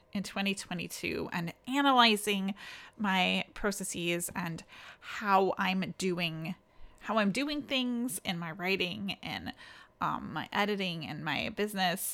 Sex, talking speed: female, 120 wpm